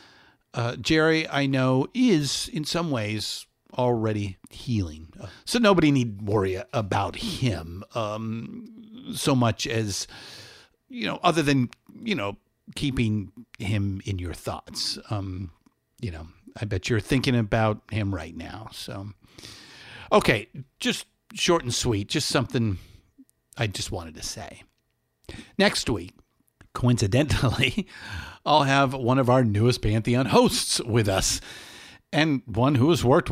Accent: American